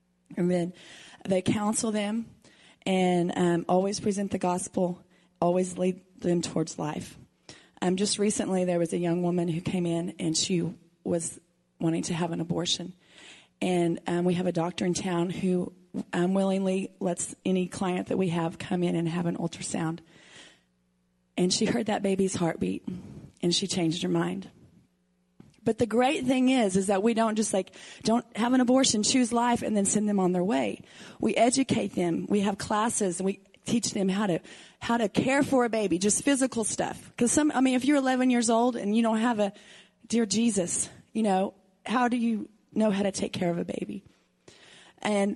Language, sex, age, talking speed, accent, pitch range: English, female, 30-49, 190 wpm, American, 175-215 Hz